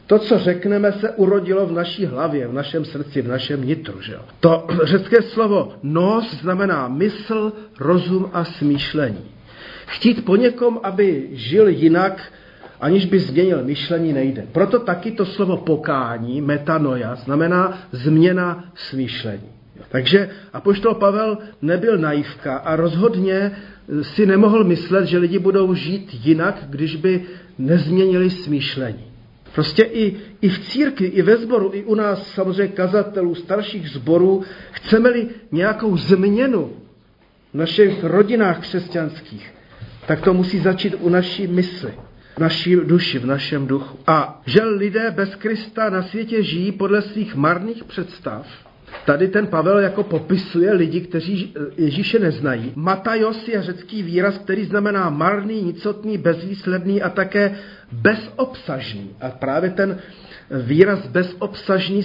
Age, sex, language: 40-59, male, Czech